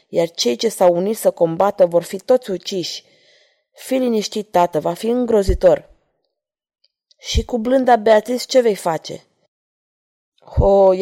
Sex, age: female, 20-39